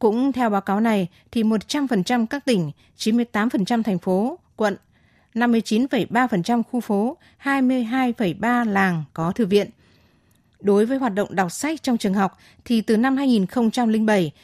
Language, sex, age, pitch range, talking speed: Vietnamese, female, 20-39, 185-240 Hz, 140 wpm